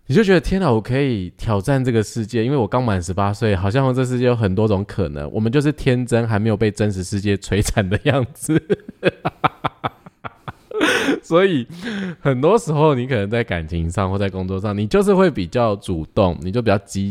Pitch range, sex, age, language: 95-125 Hz, male, 20-39, Chinese